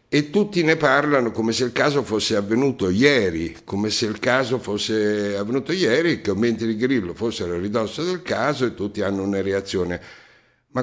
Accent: native